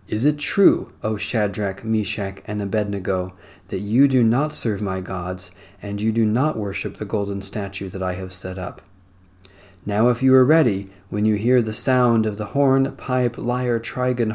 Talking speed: 185 wpm